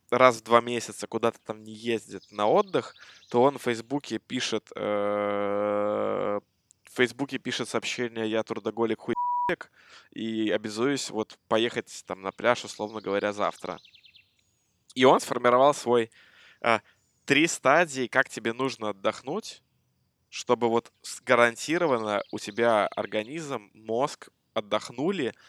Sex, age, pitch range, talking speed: male, 20-39, 110-130 Hz, 120 wpm